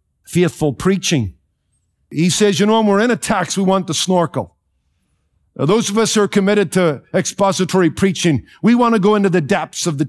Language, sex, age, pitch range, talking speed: English, male, 50-69, 150-200 Hz, 200 wpm